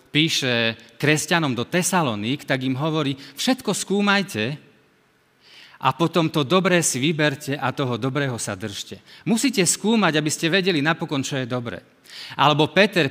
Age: 40-59